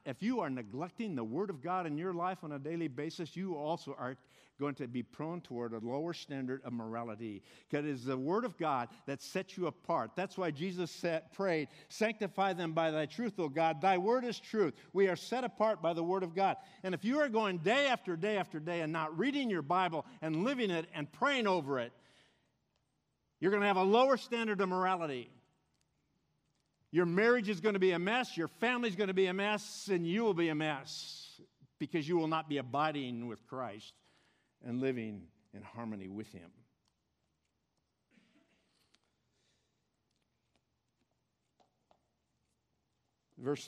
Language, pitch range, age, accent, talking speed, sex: English, 135-190 Hz, 50-69, American, 180 wpm, male